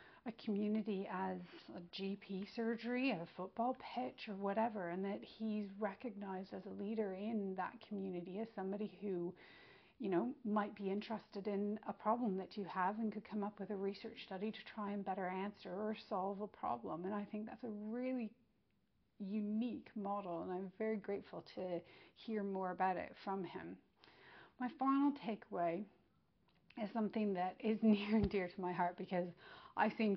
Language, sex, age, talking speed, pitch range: English, female, 40-59, 175 wpm, 190-225 Hz